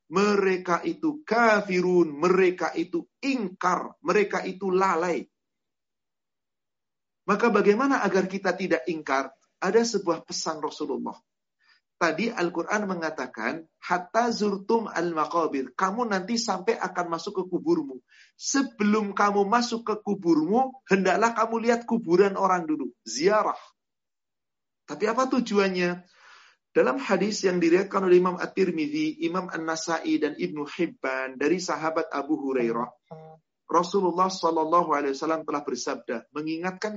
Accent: native